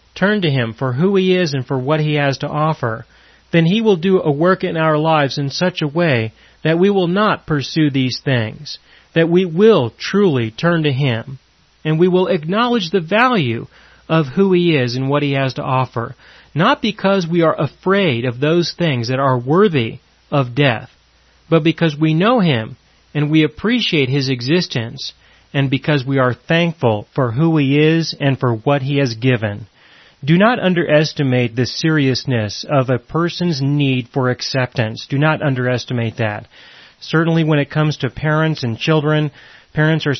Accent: American